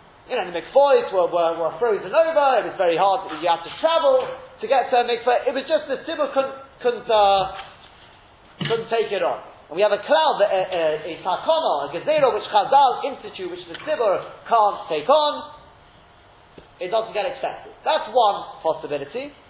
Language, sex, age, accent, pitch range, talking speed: English, male, 30-49, British, 200-305 Hz, 195 wpm